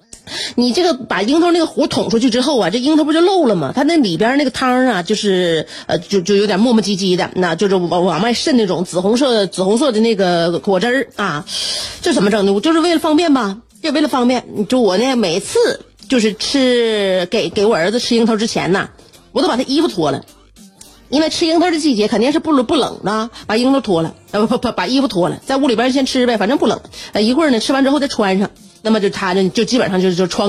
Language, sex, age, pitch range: Chinese, female, 30-49, 200-290 Hz